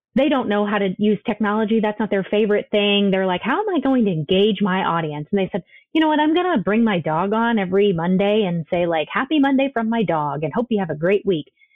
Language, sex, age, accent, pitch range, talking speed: English, female, 30-49, American, 190-245 Hz, 265 wpm